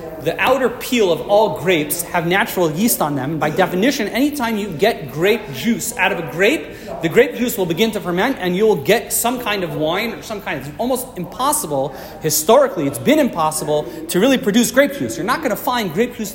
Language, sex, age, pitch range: English, male, 40-59, 165-230 Hz